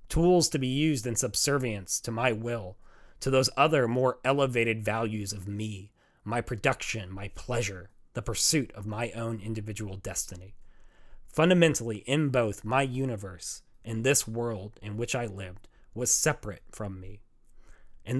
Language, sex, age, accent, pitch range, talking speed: English, male, 30-49, American, 105-135 Hz, 150 wpm